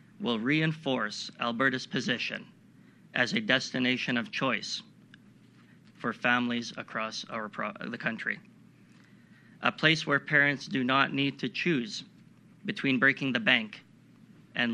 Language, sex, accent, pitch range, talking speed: English, male, American, 120-140 Hz, 115 wpm